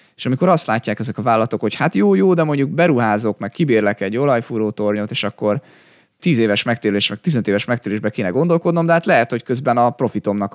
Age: 20-39